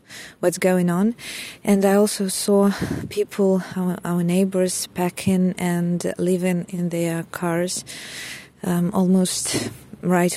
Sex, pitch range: female, 175-195 Hz